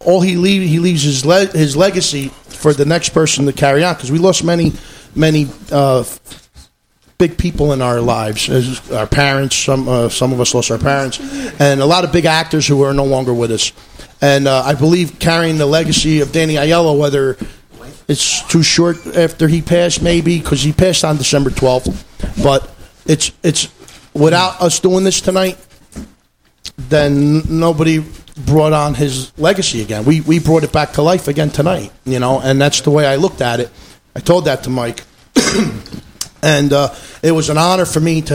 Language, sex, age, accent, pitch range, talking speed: English, male, 40-59, American, 130-160 Hz, 190 wpm